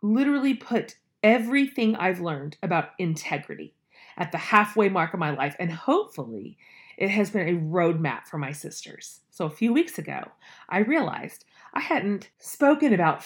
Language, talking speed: English, 160 wpm